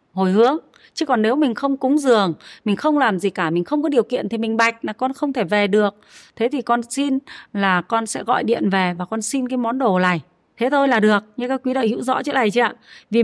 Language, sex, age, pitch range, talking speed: Vietnamese, female, 30-49, 210-280 Hz, 270 wpm